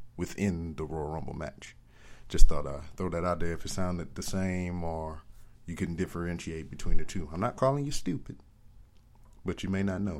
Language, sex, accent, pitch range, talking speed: English, male, American, 85-100 Hz, 200 wpm